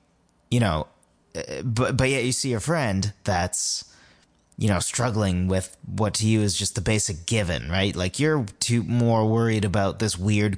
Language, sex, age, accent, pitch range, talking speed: English, male, 30-49, American, 90-110 Hz, 175 wpm